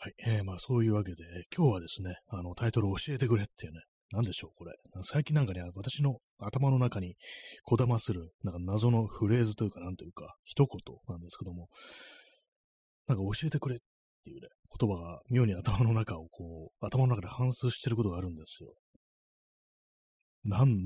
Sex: male